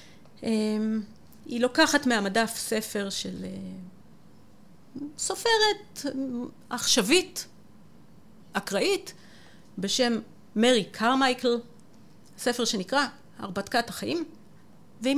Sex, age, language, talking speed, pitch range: female, 40-59, Hebrew, 65 wpm, 195-275 Hz